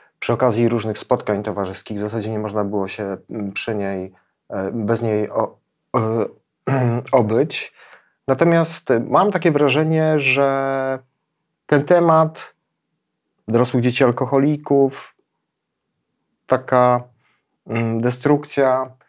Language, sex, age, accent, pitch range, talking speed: Polish, male, 30-49, native, 110-140 Hz, 90 wpm